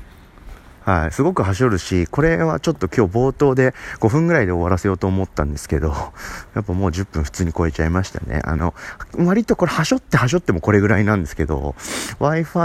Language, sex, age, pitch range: Japanese, male, 40-59, 85-125 Hz